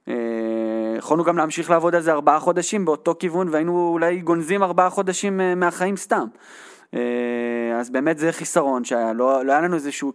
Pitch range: 130-175 Hz